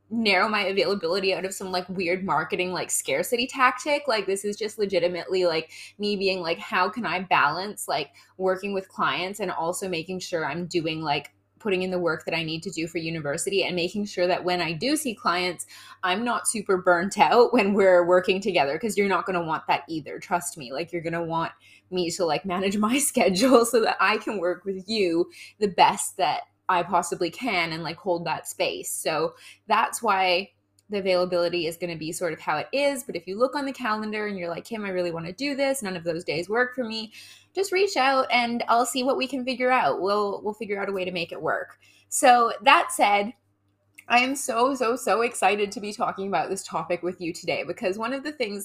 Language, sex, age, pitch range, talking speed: English, female, 20-39, 175-230 Hz, 230 wpm